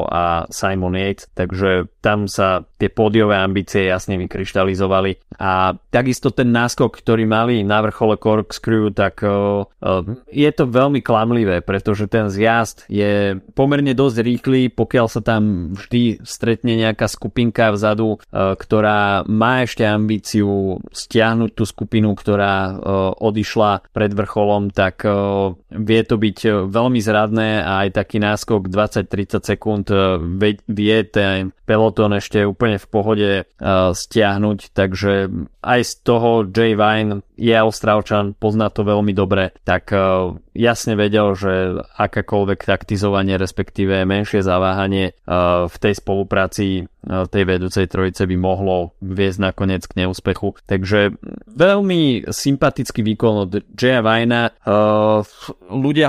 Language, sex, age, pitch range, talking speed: Slovak, male, 20-39, 95-110 Hz, 130 wpm